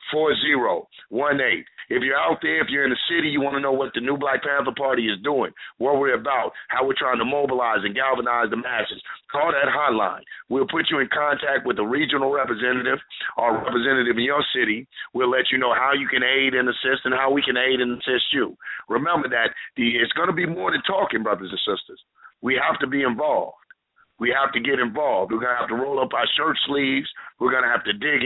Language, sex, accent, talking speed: English, male, American, 235 wpm